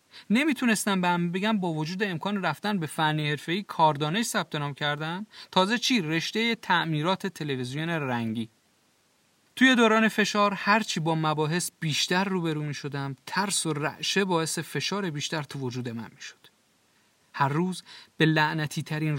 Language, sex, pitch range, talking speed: Persian, male, 145-195 Hz, 140 wpm